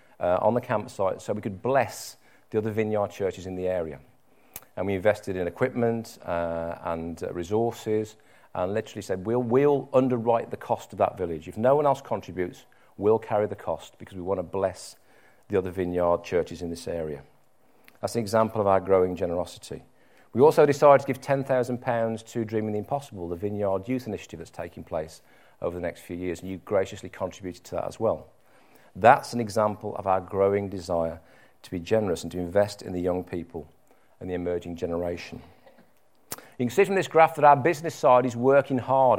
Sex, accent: male, British